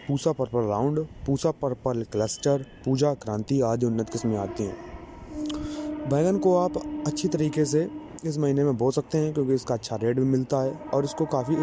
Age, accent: 20-39, native